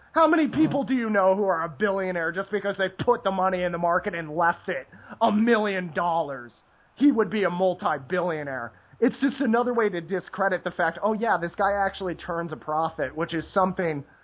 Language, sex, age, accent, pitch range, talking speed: English, male, 30-49, American, 165-215 Hz, 205 wpm